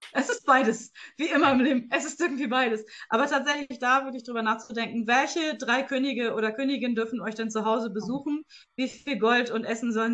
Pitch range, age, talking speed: 195-240 Hz, 20-39, 205 wpm